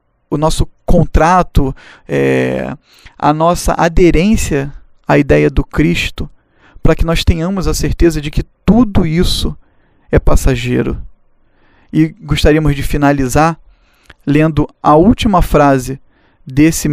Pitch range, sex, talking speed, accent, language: 135-165 Hz, male, 110 wpm, Brazilian, Portuguese